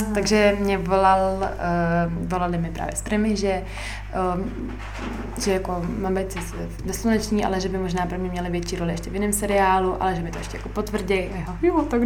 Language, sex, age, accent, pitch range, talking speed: Czech, female, 20-39, native, 170-215 Hz, 190 wpm